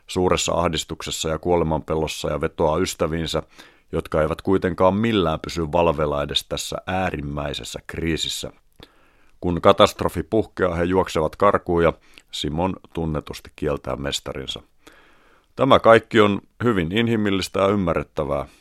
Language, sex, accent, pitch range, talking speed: Finnish, male, native, 80-95 Hz, 110 wpm